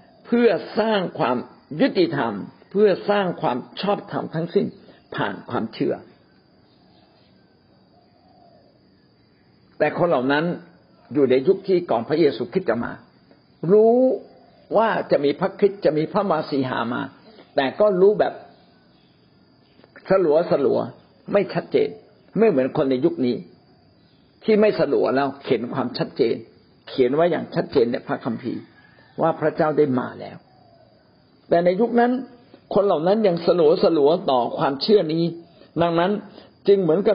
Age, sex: 60-79, male